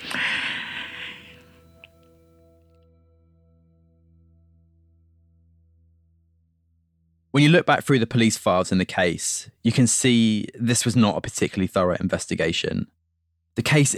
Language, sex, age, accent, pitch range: English, male, 20-39, British, 85-110 Hz